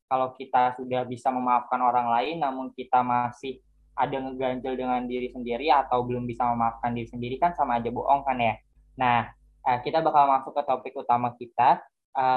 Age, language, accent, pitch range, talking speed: 10-29, Indonesian, native, 120-145 Hz, 175 wpm